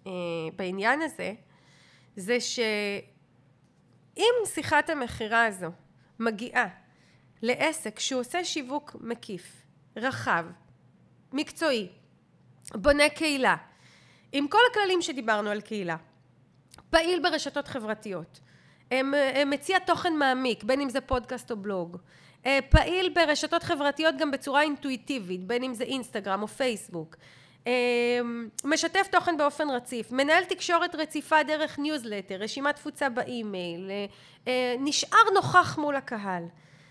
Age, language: 30-49, Hebrew